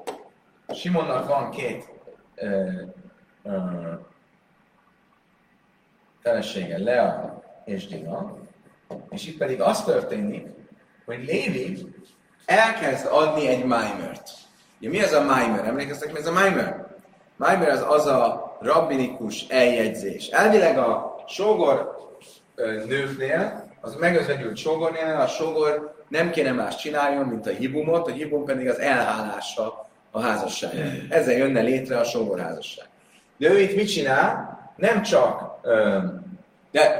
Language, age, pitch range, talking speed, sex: Hungarian, 30-49, 125-190 Hz, 115 wpm, male